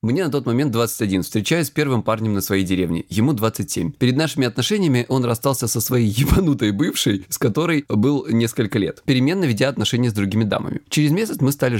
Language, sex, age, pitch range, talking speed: Russian, male, 20-39, 110-140 Hz, 195 wpm